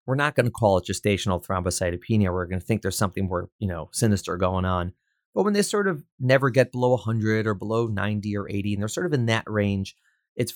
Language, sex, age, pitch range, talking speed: English, male, 30-49, 100-130 Hz, 240 wpm